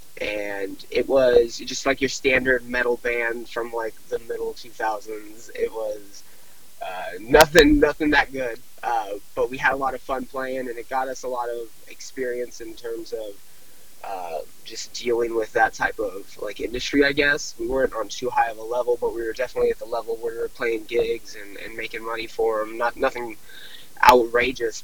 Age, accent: 20-39, American